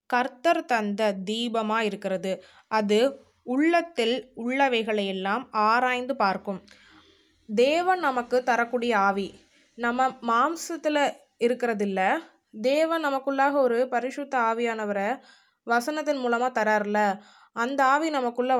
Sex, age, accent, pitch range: female, 20-39, native, 215-265 Hz